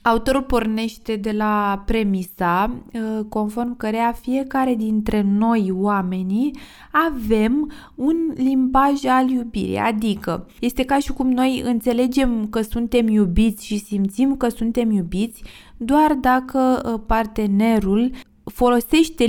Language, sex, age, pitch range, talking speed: Romanian, female, 20-39, 215-260 Hz, 110 wpm